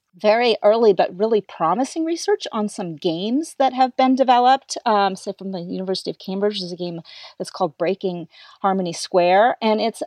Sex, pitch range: female, 175-215 Hz